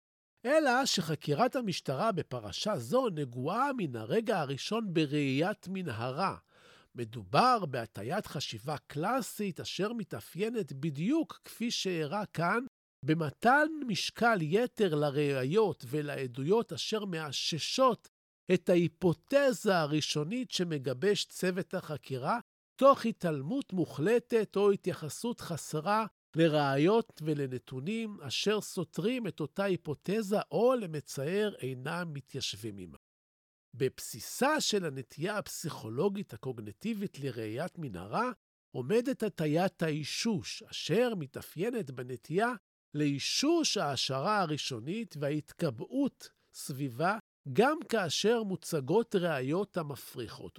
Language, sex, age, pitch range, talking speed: Hebrew, male, 50-69, 145-215 Hz, 90 wpm